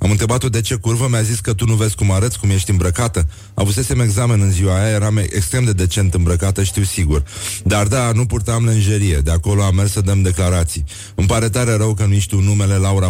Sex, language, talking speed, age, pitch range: male, Romanian, 225 wpm, 30-49, 90-105 Hz